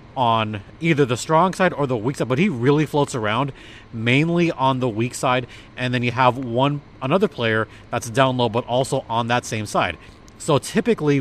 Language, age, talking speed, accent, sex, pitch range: English, 30-49, 200 wpm, American, male, 110-145 Hz